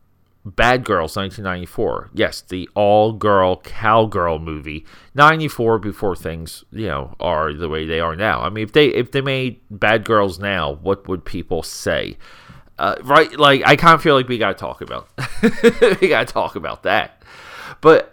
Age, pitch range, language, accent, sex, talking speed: 30-49, 95-120 Hz, English, American, male, 170 wpm